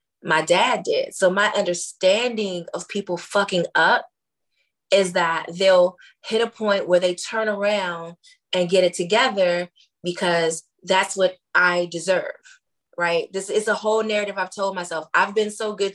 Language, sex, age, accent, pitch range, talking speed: English, female, 20-39, American, 180-240 Hz, 160 wpm